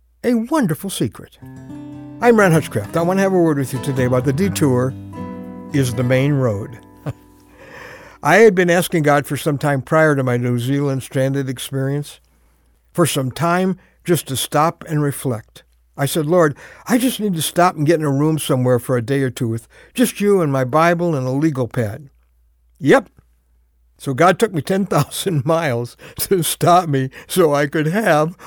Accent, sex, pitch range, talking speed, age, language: American, male, 120-170 Hz, 185 wpm, 60-79, English